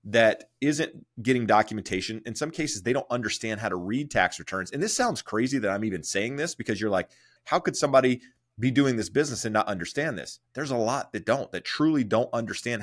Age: 30-49